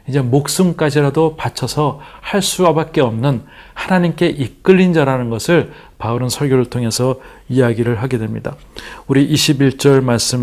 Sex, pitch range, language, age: male, 120-155 Hz, Korean, 40-59